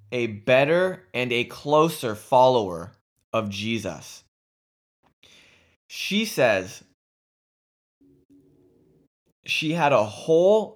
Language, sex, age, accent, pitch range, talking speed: English, male, 20-39, American, 120-155 Hz, 80 wpm